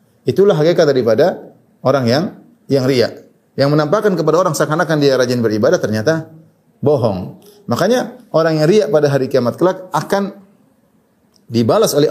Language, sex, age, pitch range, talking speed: Indonesian, male, 30-49, 115-160 Hz, 140 wpm